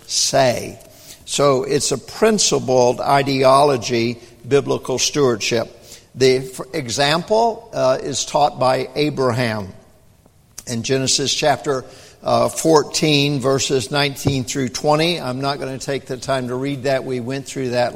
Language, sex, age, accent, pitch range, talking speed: English, male, 60-79, American, 125-150 Hz, 125 wpm